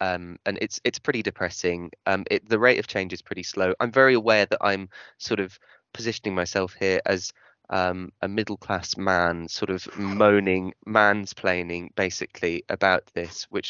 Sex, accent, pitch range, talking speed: male, British, 95-110 Hz, 170 wpm